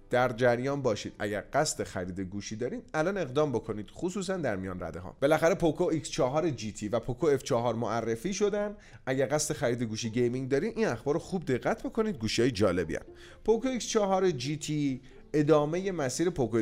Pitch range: 115-165 Hz